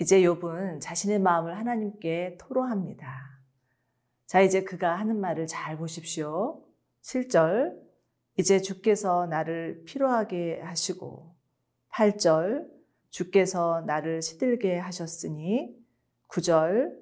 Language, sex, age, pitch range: Korean, female, 40-59, 155-205 Hz